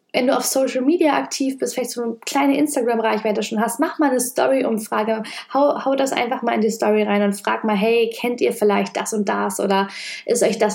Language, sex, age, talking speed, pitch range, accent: German, female, 10-29, 225 wpm, 210-245 Hz, German